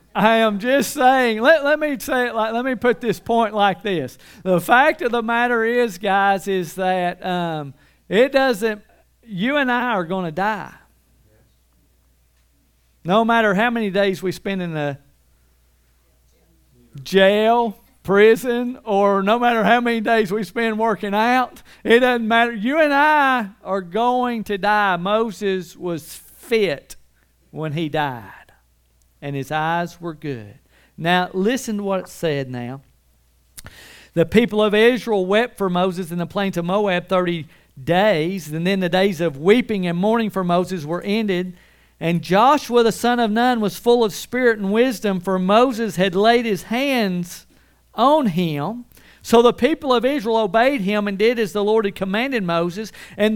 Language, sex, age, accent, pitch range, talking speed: English, male, 50-69, American, 170-235 Hz, 165 wpm